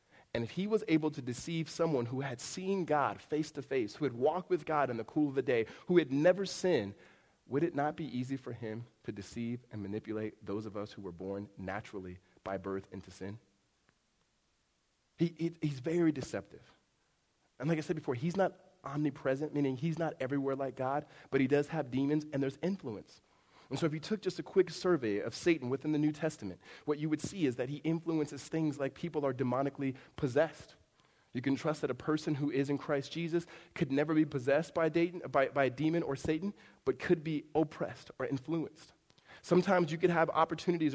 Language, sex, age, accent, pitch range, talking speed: English, male, 40-59, American, 130-165 Hz, 205 wpm